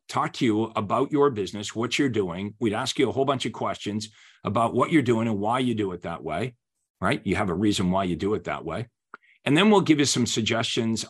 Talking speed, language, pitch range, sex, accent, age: 250 wpm, English, 105-130 Hz, male, American, 50-69